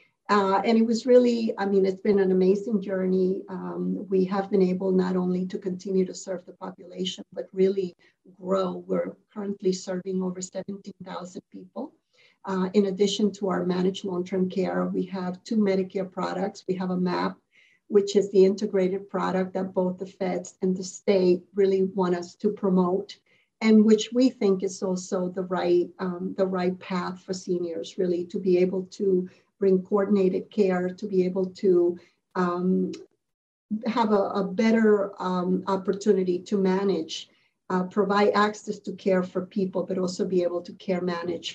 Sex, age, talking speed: female, 50-69, 170 wpm